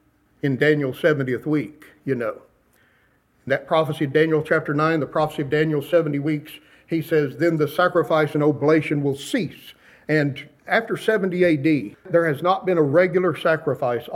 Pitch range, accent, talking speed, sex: 145-180 Hz, American, 160 wpm, male